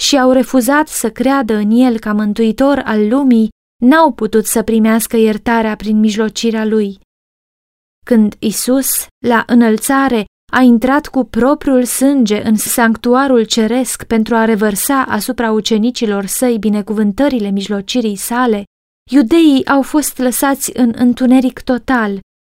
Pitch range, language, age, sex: 215-255 Hz, Romanian, 20-39, female